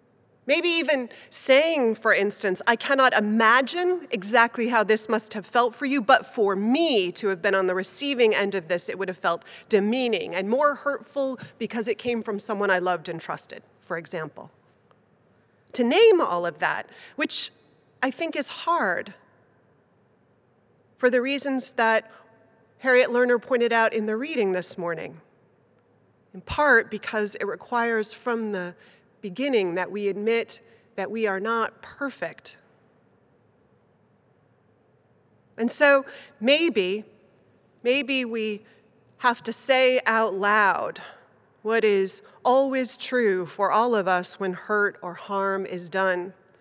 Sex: female